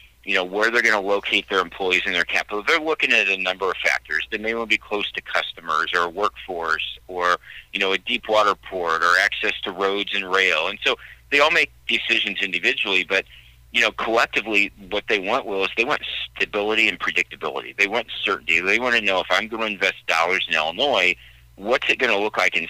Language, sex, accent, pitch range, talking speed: English, male, American, 80-110 Hz, 225 wpm